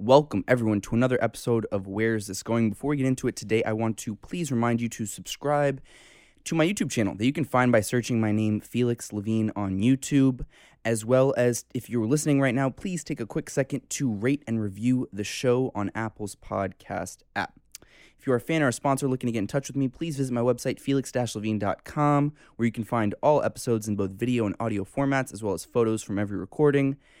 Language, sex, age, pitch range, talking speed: English, male, 20-39, 105-135 Hz, 220 wpm